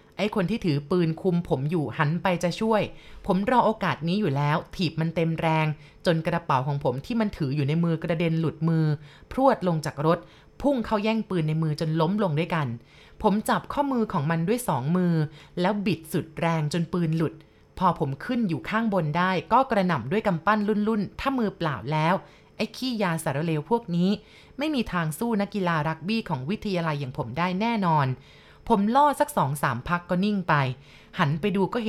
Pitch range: 160-205 Hz